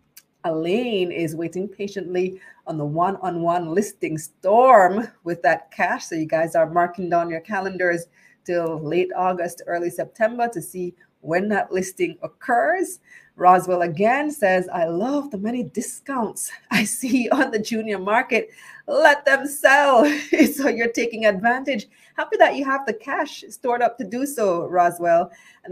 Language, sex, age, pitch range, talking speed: English, female, 30-49, 170-235 Hz, 150 wpm